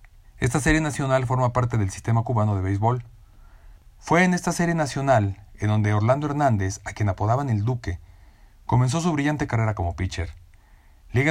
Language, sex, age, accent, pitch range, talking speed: Spanish, male, 40-59, Mexican, 100-140 Hz, 165 wpm